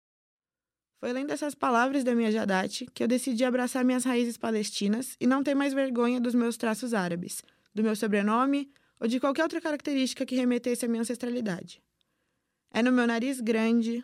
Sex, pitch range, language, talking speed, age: female, 220-260 Hz, Portuguese, 175 wpm, 20-39